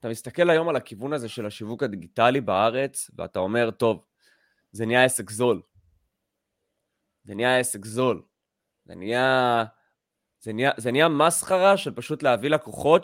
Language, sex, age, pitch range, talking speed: Hebrew, male, 20-39, 115-155 Hz, 145 wpm